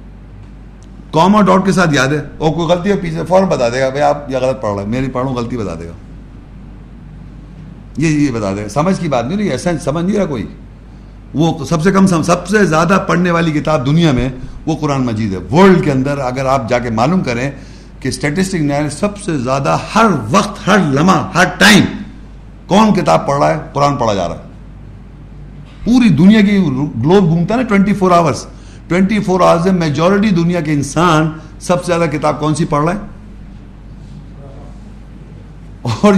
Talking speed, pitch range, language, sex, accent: 130 wpm, 130-190 Hz, English, male, Indian